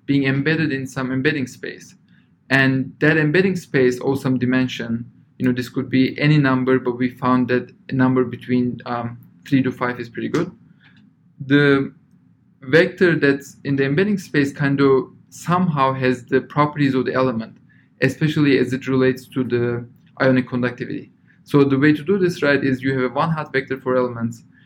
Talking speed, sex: 180 wpm, male